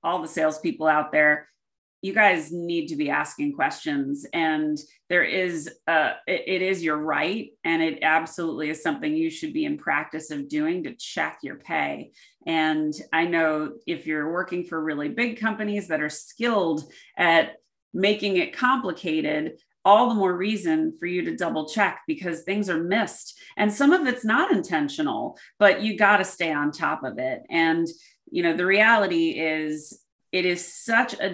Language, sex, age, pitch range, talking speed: English, female, 30-49, 160-240 Hz, 175 wpm